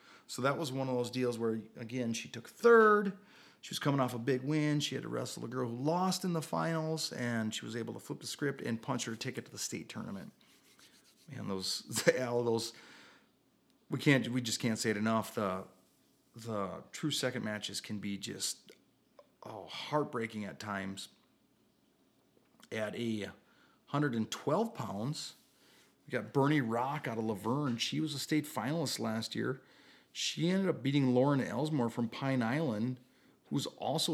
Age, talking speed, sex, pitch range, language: 30-49, 175 wpm, male, 115-150 Hz, English